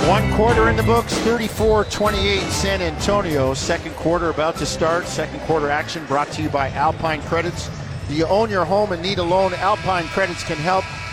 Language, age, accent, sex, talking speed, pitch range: English, 50-69, American, male, 190 wpm, 150-185 Hz